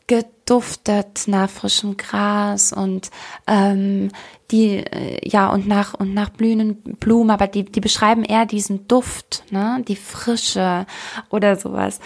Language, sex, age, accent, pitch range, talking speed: German, female, 20-39, German, 200-230 Hz, 135 wpm